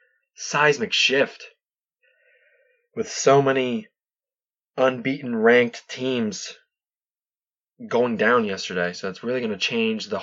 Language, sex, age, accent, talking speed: English, male, 20-39, American, 105 wpm